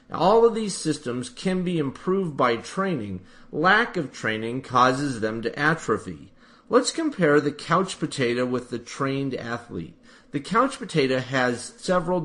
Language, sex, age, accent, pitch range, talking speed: English, male, 40-59, American, 140-185 Hz, 145 wpm